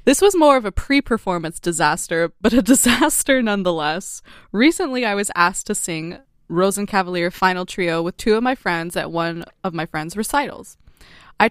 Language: English